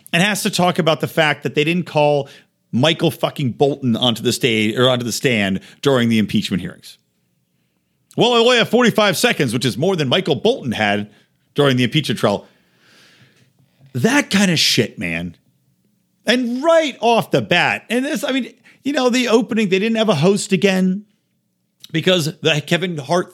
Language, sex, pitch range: English, male, 125-185 Hz